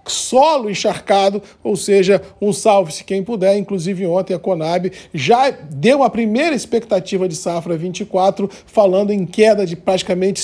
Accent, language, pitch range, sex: Brazilian, Portuguese, 185-220 Hz, male